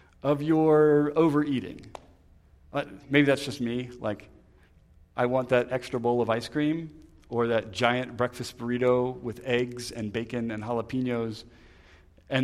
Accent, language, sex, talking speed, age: American, English, male, 135 wpm, 40-59